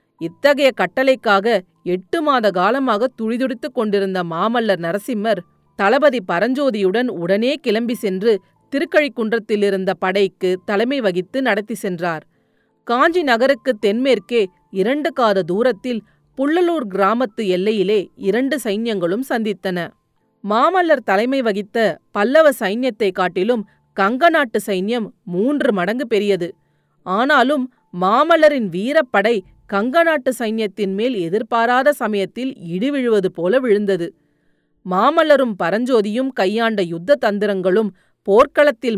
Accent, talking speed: native, 95 wpm